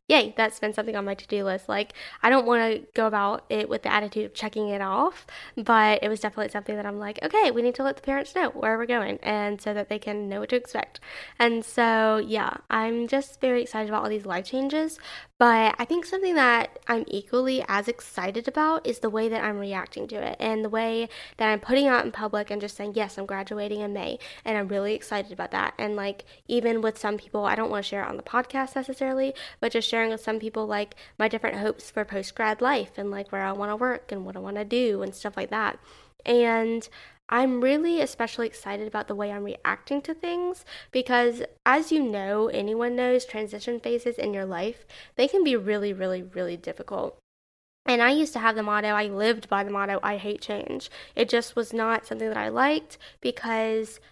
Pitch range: 210-245 Hz